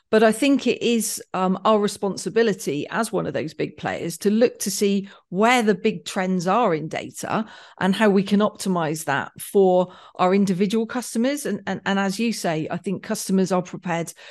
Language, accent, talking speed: English, British, 195 wpm